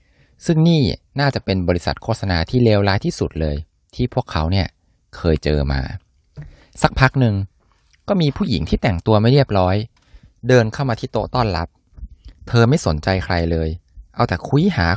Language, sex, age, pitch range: Thai, male, 20-39, 80-110 Hz